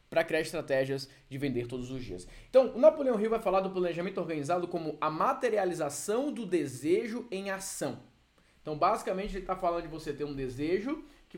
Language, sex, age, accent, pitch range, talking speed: Portuguese, male, 20-39, Brazilian, 150-205 Hz, 185 wpm